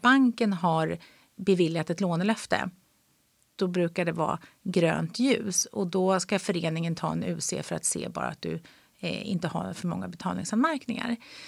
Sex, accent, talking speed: female, native, 150 wpm